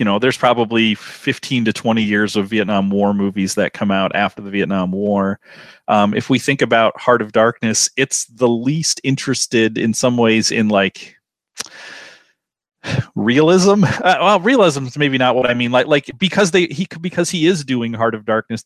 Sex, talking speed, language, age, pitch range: male, 185 wpm, English, 30-49, 105-130 Hz